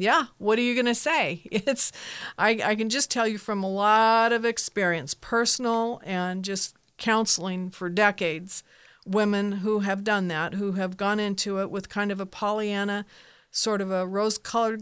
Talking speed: 180 wpm